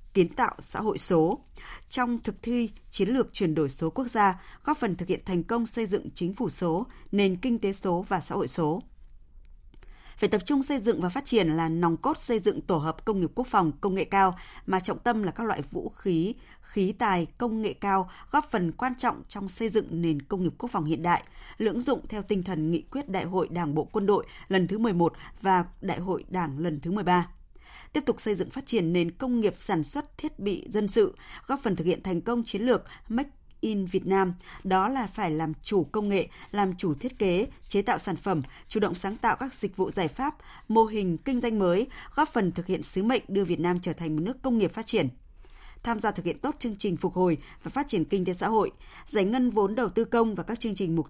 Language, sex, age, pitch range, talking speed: Vietnamese, female, 20-39, 175-230 Hz, 240 wpm